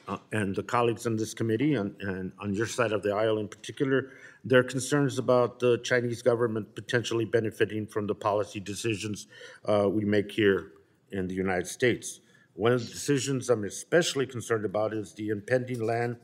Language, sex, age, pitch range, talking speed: English, male, 50-69, 110-130 Hz, 180 wpm